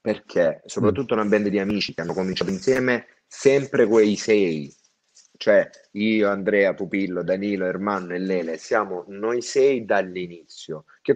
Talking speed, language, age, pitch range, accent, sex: 140 wpm, Italian, 30-49, 100-140 Hz, native, male